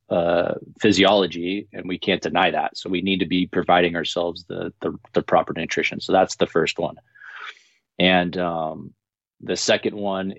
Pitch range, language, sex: 90-95 Hz, English, male